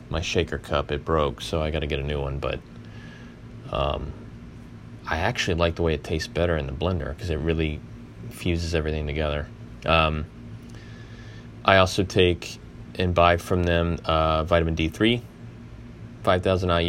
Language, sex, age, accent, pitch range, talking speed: English, male, 20-39, American, 75-90 Hz, 155 wpm